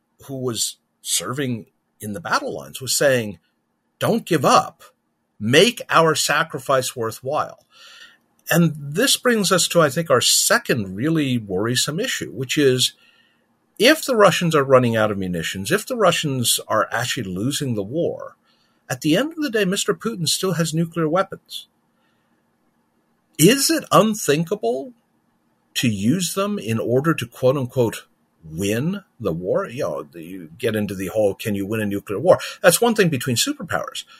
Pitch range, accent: 110-170 Hz, American